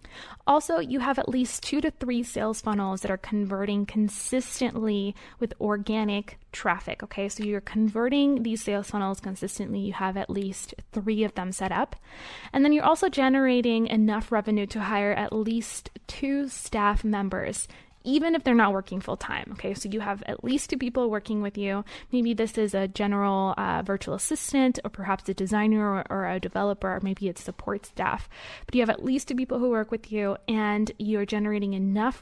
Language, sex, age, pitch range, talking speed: English, female, 20-39, 200-245 Hz, 190 wpm